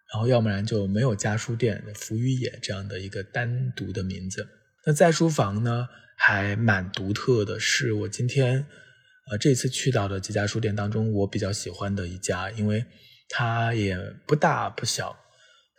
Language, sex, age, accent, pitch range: Chinese, male, 20-39, native, 100-130 Hz